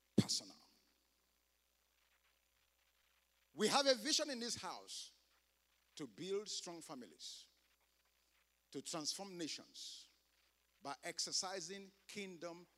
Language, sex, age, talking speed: English, male, 50-69, 85 wpm